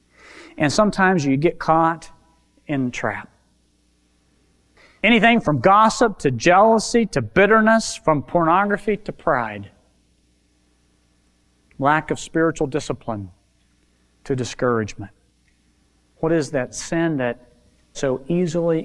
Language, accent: English, American